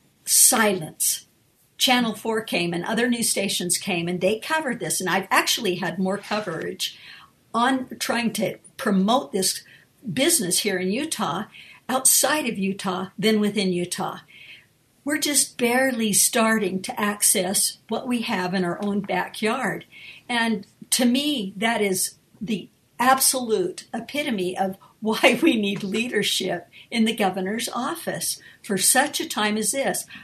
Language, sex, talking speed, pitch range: English, female, 140 wpm, 190-250 Hz